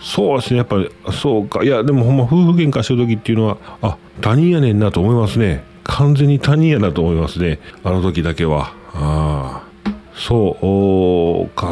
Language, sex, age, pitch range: Japanese, male, 40-59, 85-135 Hz